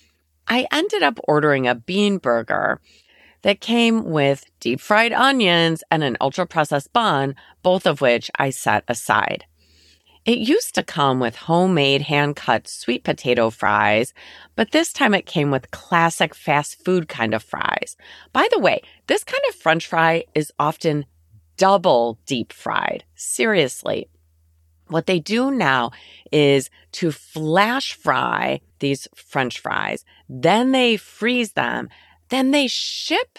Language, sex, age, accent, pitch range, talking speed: English, female, 30-49, American, 130-200 Hz, 135 wpm